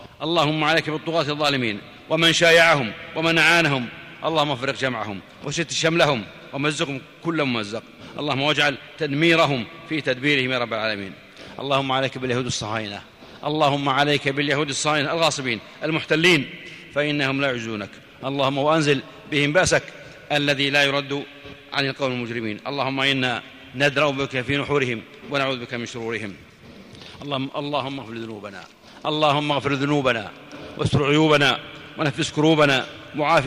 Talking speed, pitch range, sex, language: 125 wpm, 130-155 Hz, male, Arabic